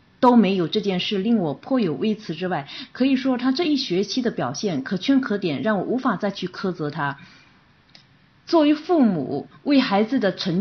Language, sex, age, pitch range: Chinese, female, 20-39, 180-250 Hz